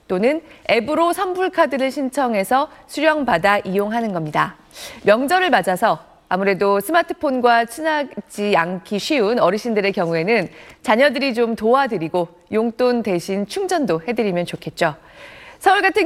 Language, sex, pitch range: Korean, female, 195-290 Hz